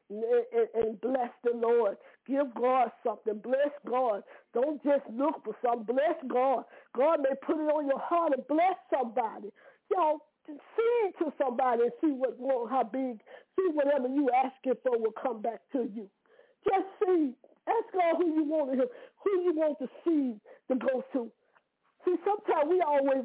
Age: 40-59